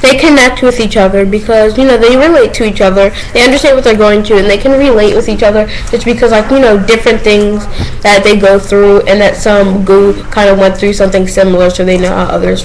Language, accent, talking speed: English, American, 245 wpm